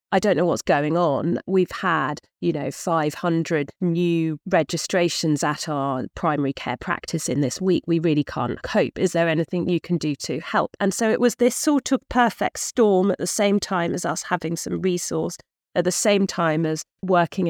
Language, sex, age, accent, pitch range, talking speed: English, female, 40-59, British, 165-200 Hz, 195 wpm